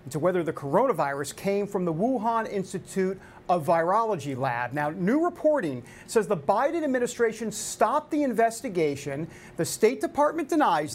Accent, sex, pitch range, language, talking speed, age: American, male, 165-230 Hz, English, 140 wpm, 40-59